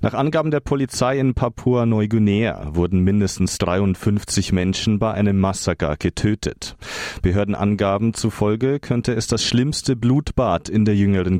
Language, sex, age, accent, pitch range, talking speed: German, male, 30-49, German, 100-120 Hz, 125 wpm